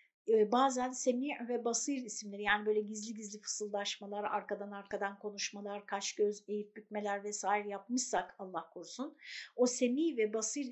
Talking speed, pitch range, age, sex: 140 wpm, 215-285 Hz, 50-69, female